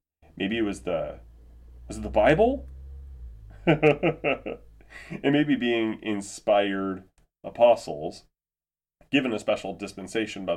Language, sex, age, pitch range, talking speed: English, male, 30-49, 90-110 Hz, 100 wpm